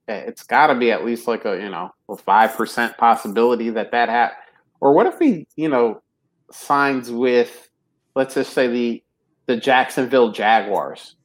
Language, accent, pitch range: English, American, 120-140 Hz